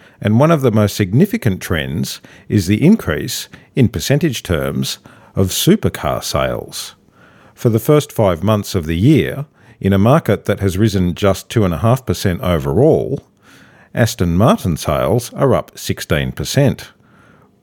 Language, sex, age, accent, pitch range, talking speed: English, male, 50-69, Australian, 85-120 Hz, 135 wpm